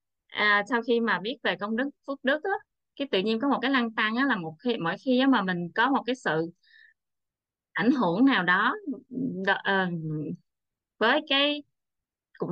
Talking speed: 195 wpm